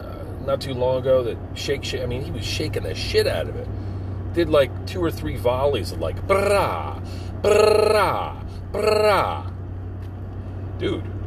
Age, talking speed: 40-59, 155 wpm